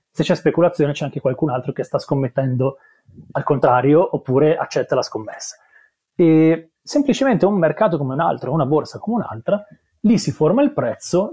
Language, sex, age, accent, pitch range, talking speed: Italian, male, 30-49, native, 135-185 Hz, 170 wpm